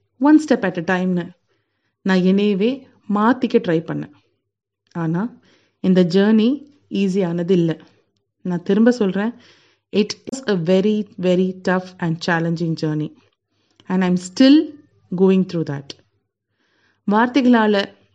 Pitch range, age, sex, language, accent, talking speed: 165-225 Hz, 30-49, female, Tamil, native, 115 wpm